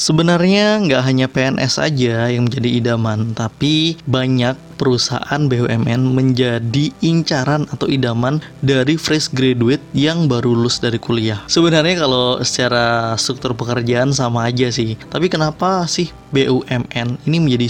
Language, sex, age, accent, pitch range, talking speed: Indonesian, male, 20-39, native, 125-165 Hz, 130 wpm